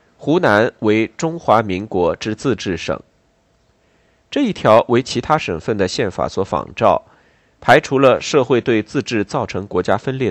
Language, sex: Chinese, male